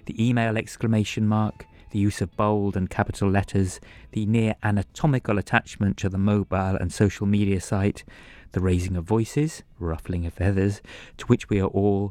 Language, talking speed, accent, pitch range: English, 170 wpm, British, 90-110 Hz